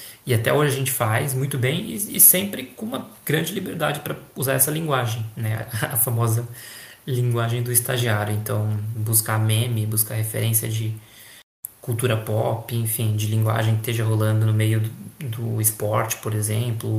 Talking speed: 165 wpm